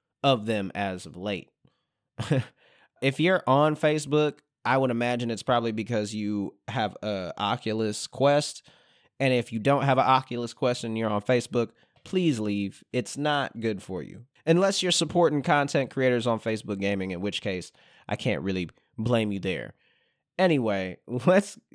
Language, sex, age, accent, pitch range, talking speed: English, male, 20-39, American, 110-140 Hz, 160 wpm